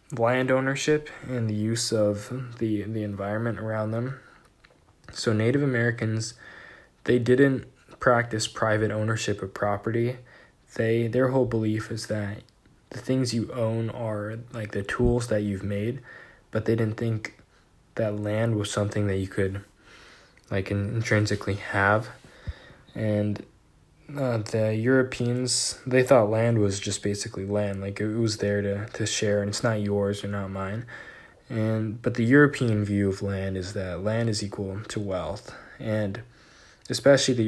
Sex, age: male, 10-29